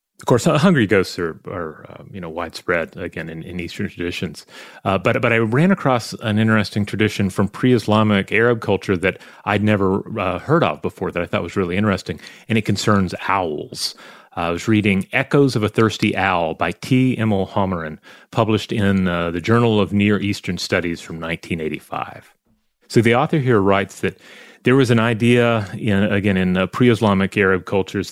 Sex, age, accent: male, 30-49, American